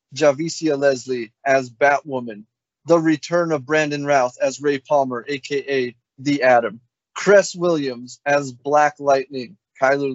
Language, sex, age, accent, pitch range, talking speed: English, male, 30-49, American, 130-150 Hz, 125 wpm